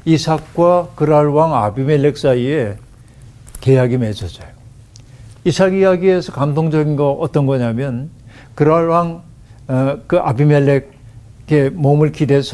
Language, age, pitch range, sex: Korean, 60-79, 120-150 Hz, male